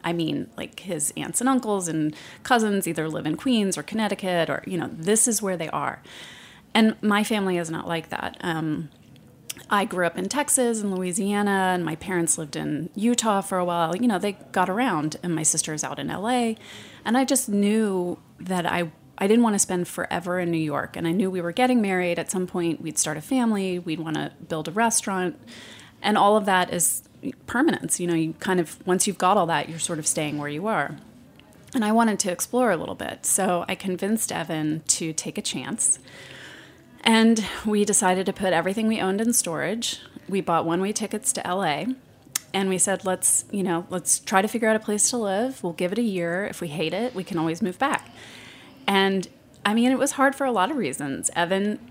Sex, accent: female, American